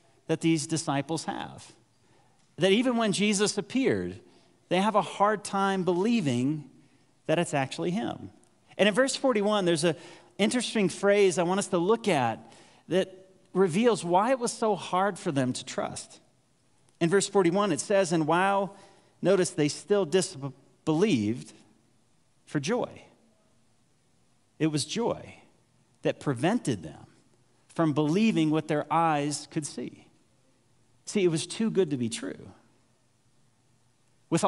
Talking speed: 140 wpm